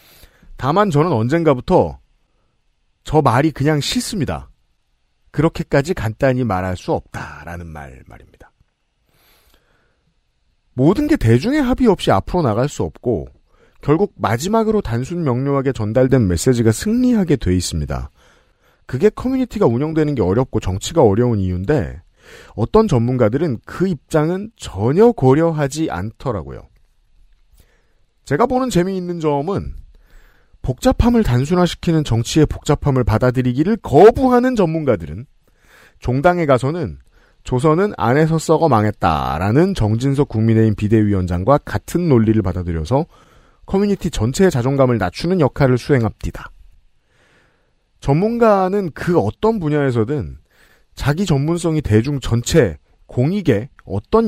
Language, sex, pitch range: Korean, male, 110-170 Hz